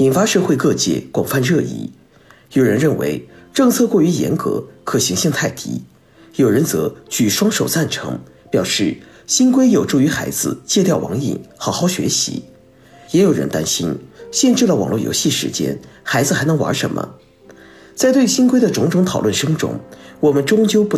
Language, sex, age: Chinese, male, 50-69